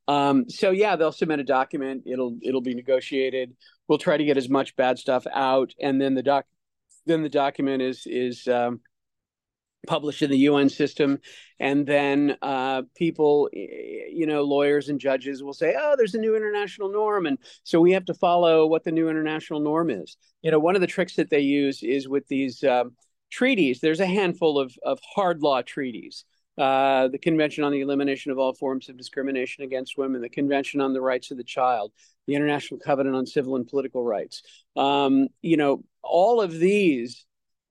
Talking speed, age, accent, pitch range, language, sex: 195 wpm, 50-69, American, 130-165 Hz, English, male